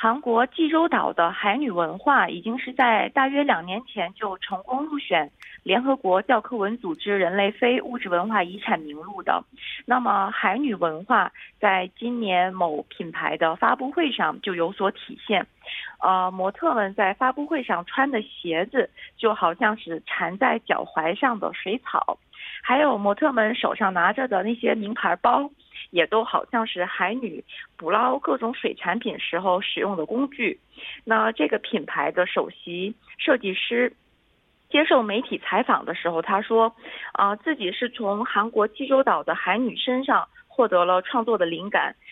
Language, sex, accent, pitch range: Korean, female, Chinese, 190-245 Hz